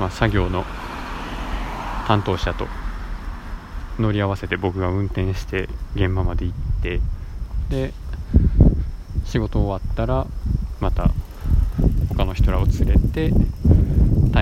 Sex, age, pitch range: male, 20-39, 85-105 Hz